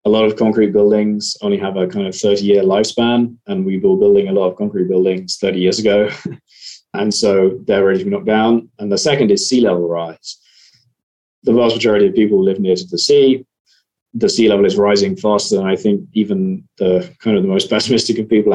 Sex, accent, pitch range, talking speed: male, British, 100-145 Hz, 215 wpm